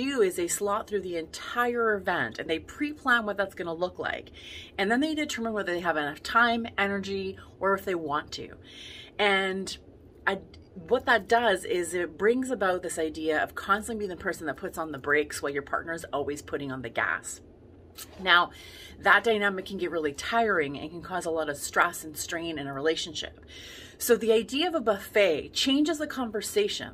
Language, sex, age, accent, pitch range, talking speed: English, female, 30-49, American, 160-220 Hz, 200 wpm